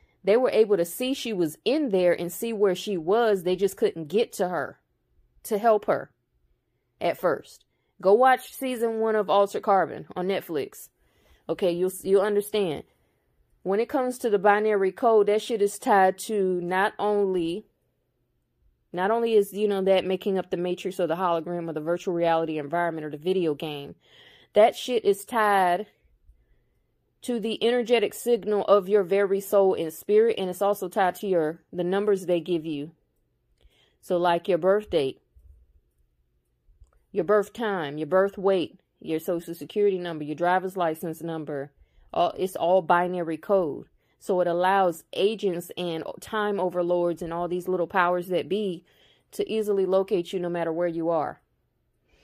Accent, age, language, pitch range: American, 20-39, English, 170-205 Hz